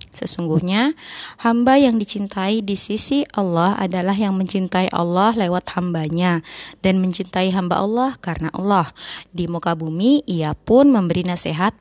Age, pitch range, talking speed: 20-39, 180-230 Hz, 130 wpm